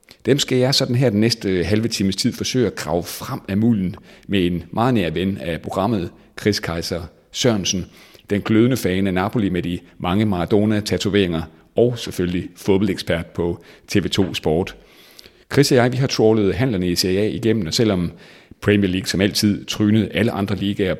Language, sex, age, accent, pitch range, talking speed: Danish, male, 40-59, native, 85-110 Hz, 180 wpm